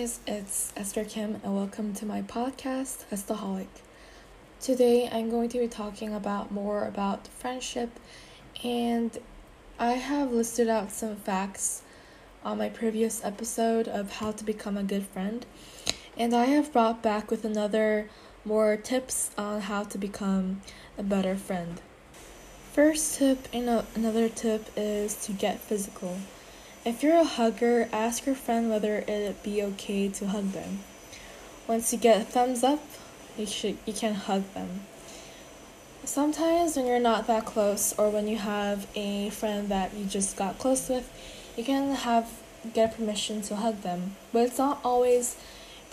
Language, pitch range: Korean, 205-240 Hz